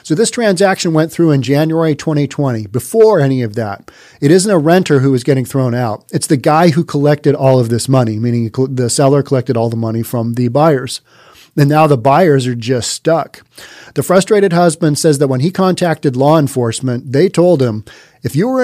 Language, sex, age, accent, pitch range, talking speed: English, male, 40-59, American, 130-165 Hz, 205 wpm